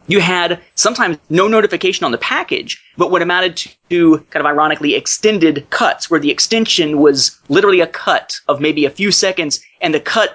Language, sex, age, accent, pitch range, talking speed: English, male, 30-49, American, 145-190 Hz, 185 wpm